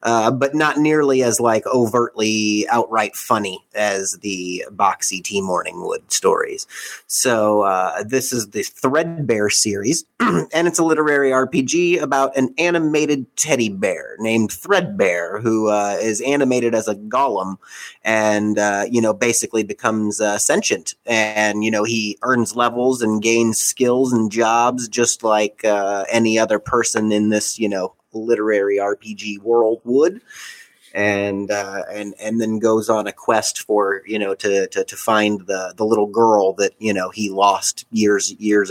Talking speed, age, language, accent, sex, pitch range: 155 wpm, 30-49, English, American, male, 105-135 Hz